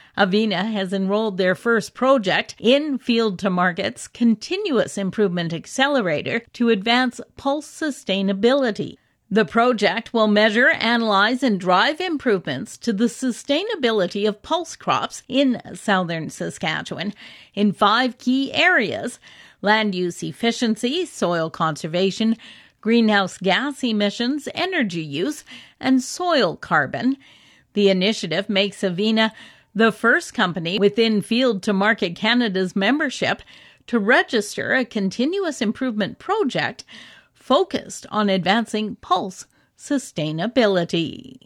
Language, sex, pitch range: English, female, 200-255 Hz